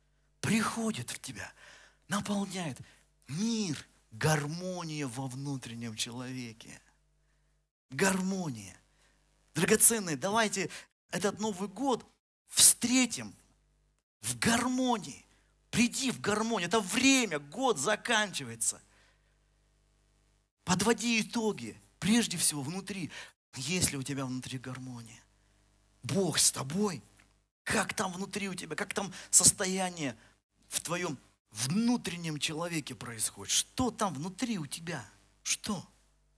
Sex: male